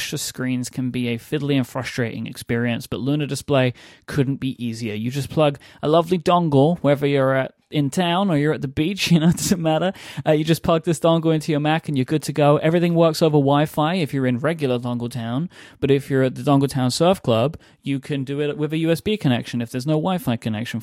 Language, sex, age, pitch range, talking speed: English, male, 30-49, 120-155 Hz, 235 wpm